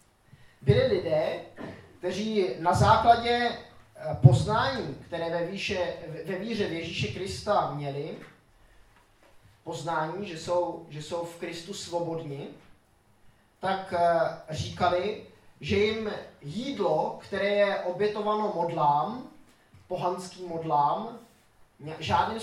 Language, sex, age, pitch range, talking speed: Czech, male, 20-39, 135-200 Hz, 90 wpm